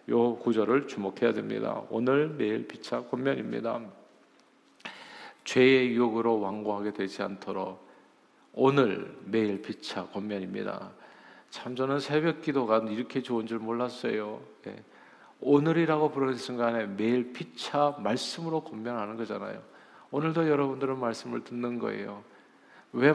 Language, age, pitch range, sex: Korean, 50-69, 115-140 Hz, male